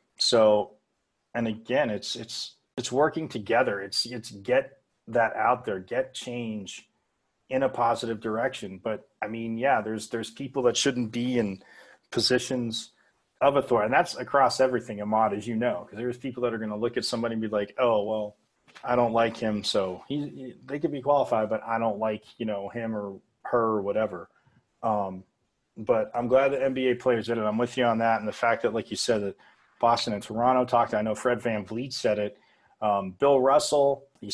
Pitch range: 110-125 Hz